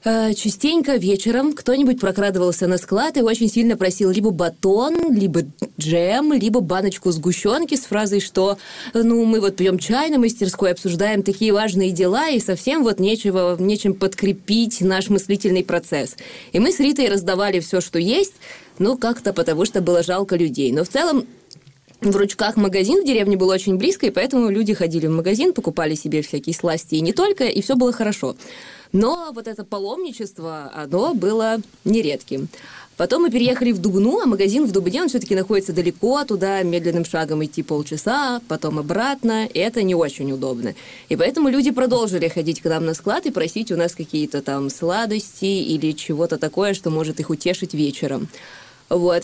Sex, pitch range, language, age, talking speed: female, 175-235 Hz, Russian, 20-39, 170 wpm